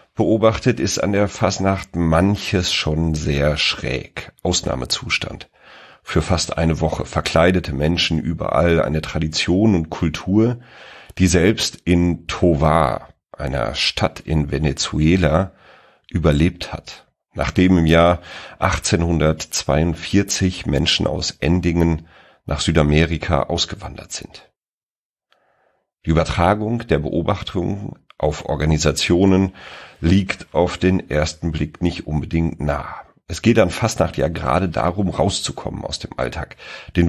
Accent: German